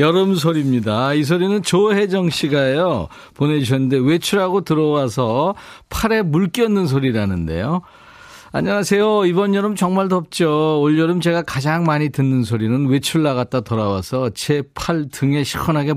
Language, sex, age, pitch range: Korean, male, 40-59, 125-185 Hz